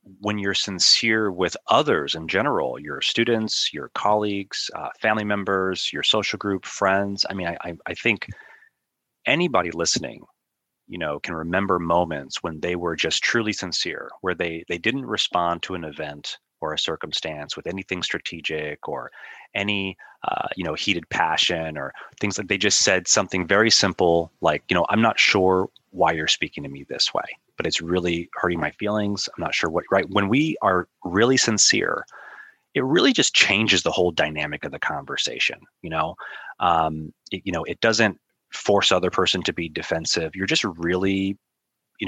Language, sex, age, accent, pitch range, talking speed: English, male, 30-49, American, 85-100 Hz, 175 wpm